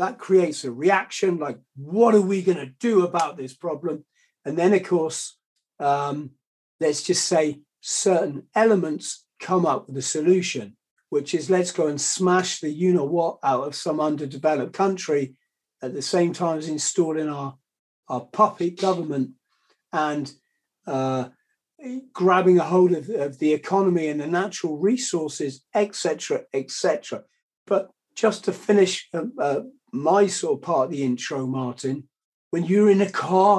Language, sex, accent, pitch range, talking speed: English, male, British, 155-195 Hz, 160 wpm